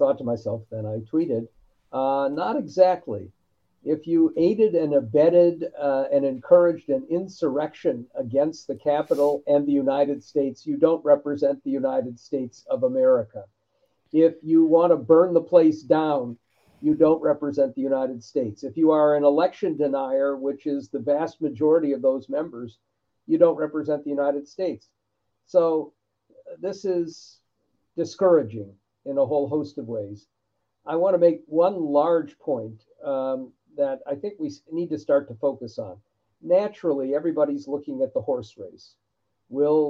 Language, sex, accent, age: English, male, American, 50-69